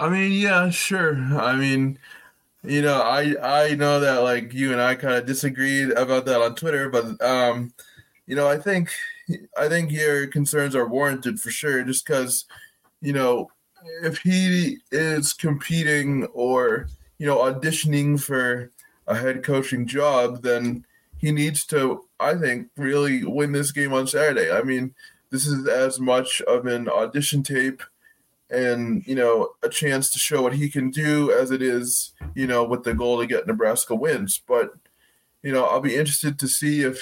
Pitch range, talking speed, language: 125-150 Hz, 175 wpm, English